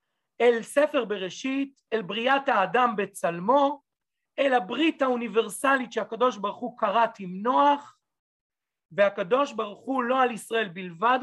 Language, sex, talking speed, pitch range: Hebrew, male, 125 wpm, 195-255 Hz